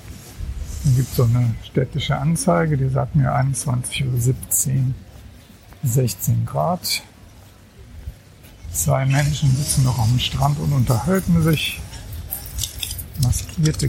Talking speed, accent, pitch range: 95 wpm, German, 110-145 Hz